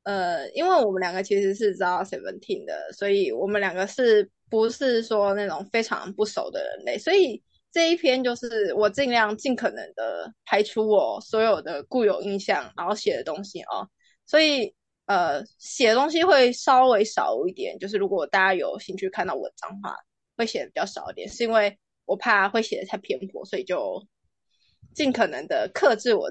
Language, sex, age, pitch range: Chinese, female, 20-39, 205-300 Hz